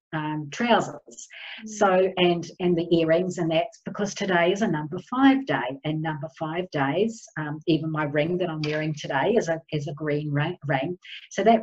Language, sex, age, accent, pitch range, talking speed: English, female, 40-59, Australian, 155-205 Hz, 185 wpm